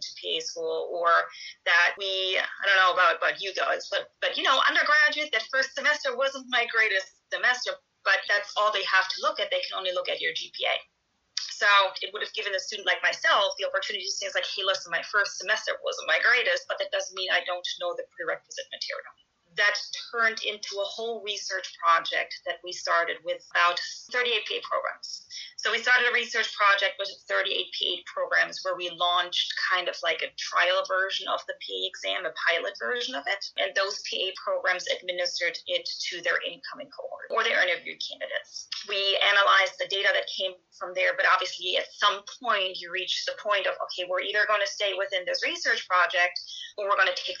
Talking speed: 205 wpm